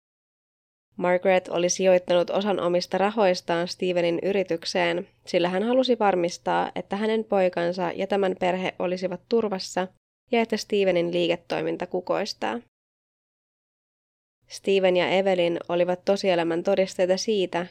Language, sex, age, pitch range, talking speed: Finnish, female, 20-39, 175-195 Hz, 110 wpm